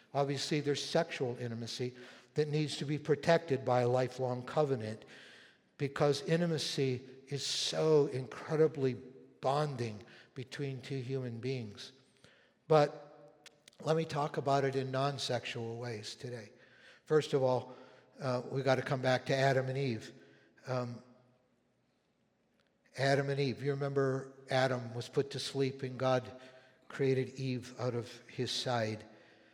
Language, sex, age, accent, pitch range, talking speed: English, male, 60-79, American, 125-145 Hz, 130 wpm